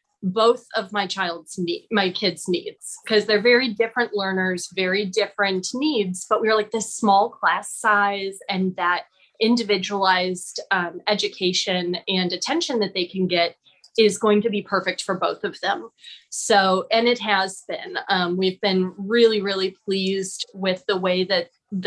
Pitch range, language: 185-225 Hz, English